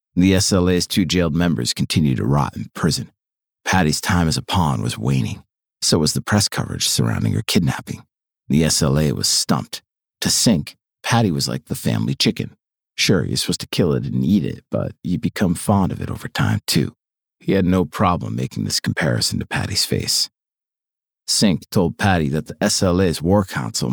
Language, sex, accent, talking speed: English, male, American, 185 wpm